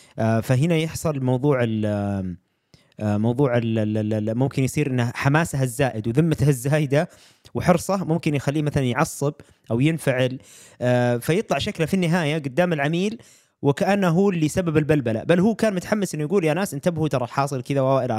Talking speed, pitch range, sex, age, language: 145 wpm, 125-165 Hz, male, 20-39, Arabic